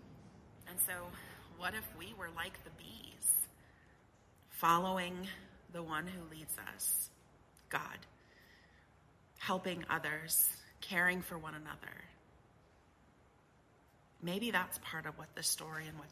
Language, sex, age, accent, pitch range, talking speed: English, female, 30-49, American, 155-185 Hz, 115 wpm